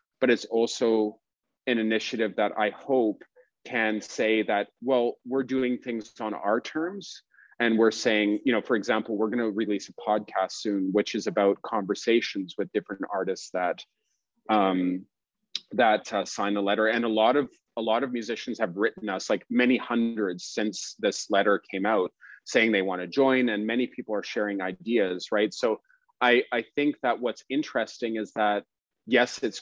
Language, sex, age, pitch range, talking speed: English, male, 30-49, 110-130 Hz, 180 wpm